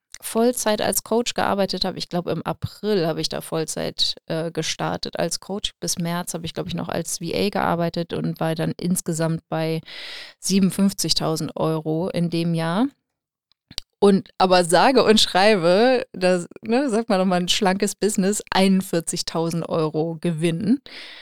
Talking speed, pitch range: 155 wpm, 165-190 Hz